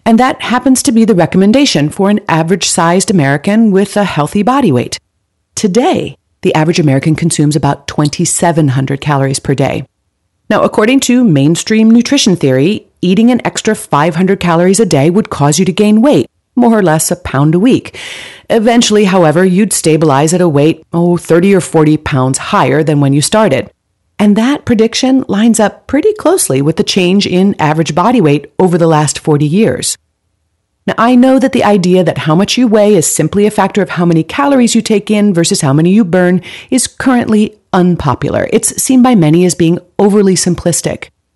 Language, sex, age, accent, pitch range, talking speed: English, female, 40-59, American, 155-220 Hz, 180 wpm